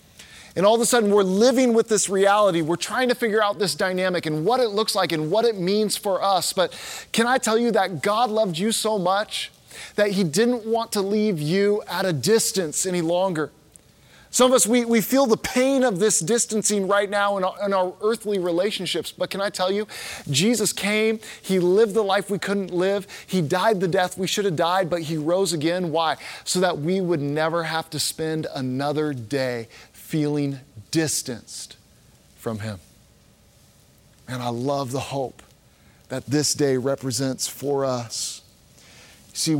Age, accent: 20-39, American